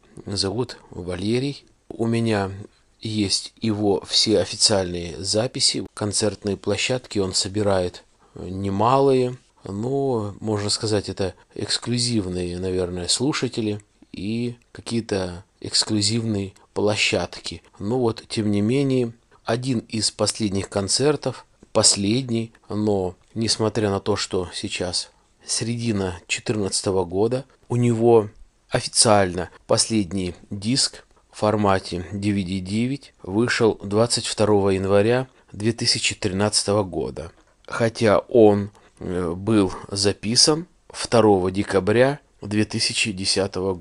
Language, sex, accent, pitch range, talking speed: Russian, male, native, 100-115 Hz, 90 wpm